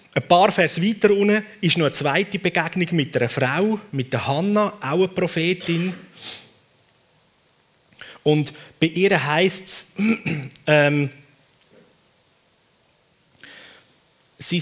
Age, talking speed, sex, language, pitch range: 30-49, 105 wpm, male, German, 135-180 Hz